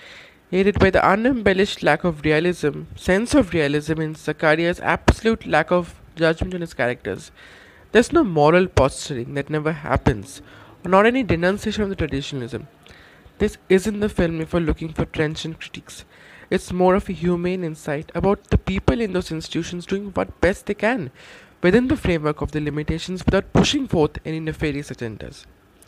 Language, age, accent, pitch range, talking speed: English, 20-39, Indian, 150-185 Hz, 170 wpm